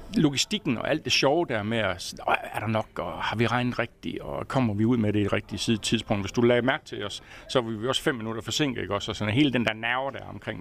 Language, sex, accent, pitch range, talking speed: Danish, male, native, 105-130 Hz, 265 wpm